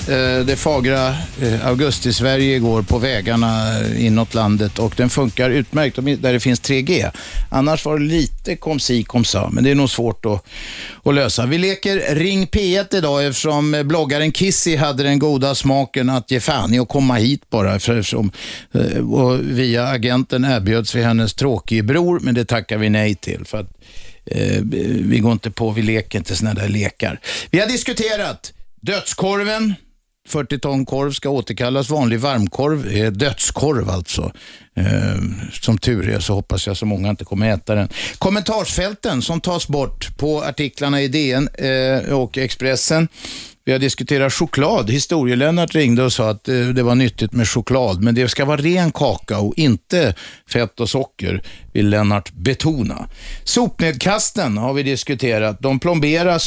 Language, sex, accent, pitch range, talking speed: Swedish, male, native, 110-150 Hz, 160 wpm